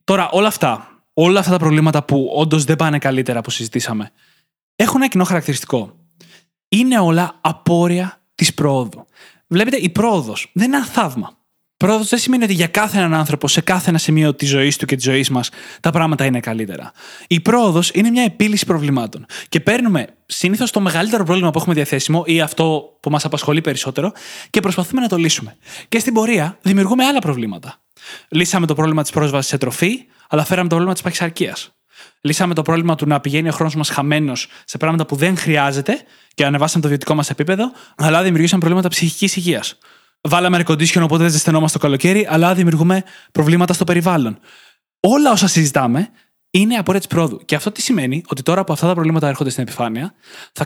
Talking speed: 185 wpm